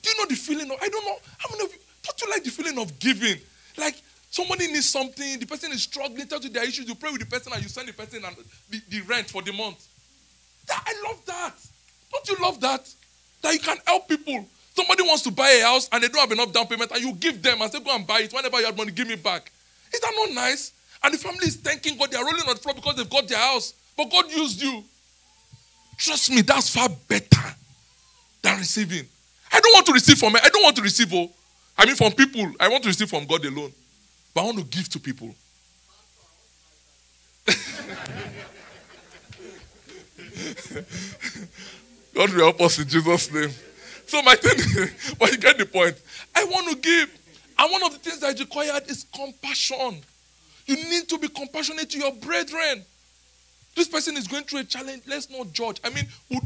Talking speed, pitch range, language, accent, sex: 220 wpm, 200-305 Hz, English, Nigerian, male